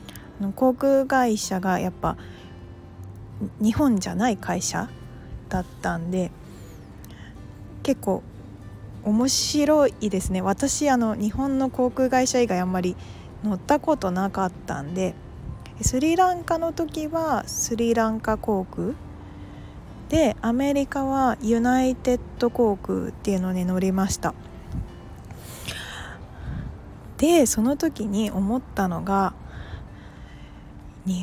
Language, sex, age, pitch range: Japanese, female, 20-39, 185-260 Hz